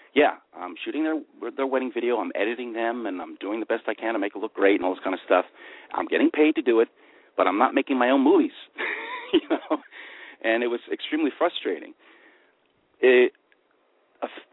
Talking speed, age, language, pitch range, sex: 205 wpm, 50-69, English, 285-435 Hz, male